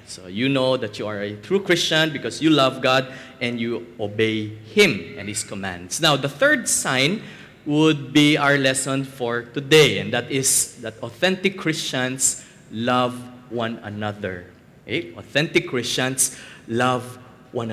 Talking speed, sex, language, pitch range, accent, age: 145 wpm, male, English, 115-150 Hz, Filipino, 20-39